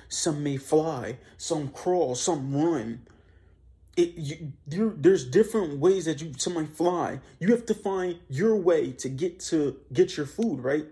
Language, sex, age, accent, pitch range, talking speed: English, male, 30-49, American, 130-160 Hz, 165 wpm